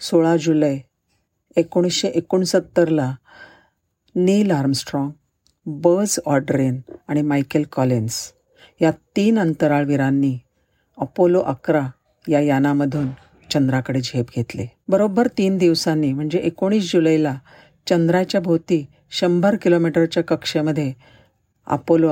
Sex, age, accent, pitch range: female, 50-69, native, 135-175 Hz